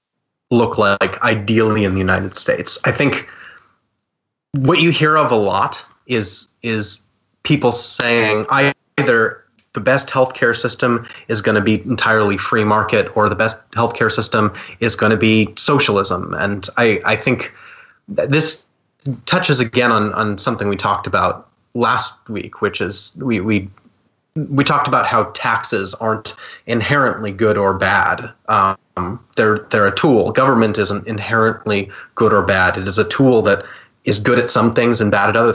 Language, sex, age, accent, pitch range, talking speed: English, male, 30-49, American, 105-120 Hz, 160 wpm